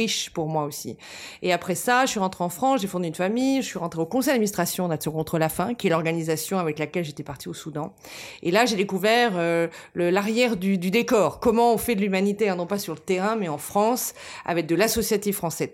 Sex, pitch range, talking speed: female, 155-205 Hz, 235 wpm